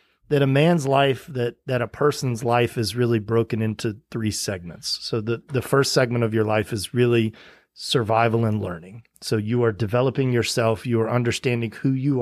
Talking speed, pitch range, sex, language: 185 wpm, 115-140 Hz, male, English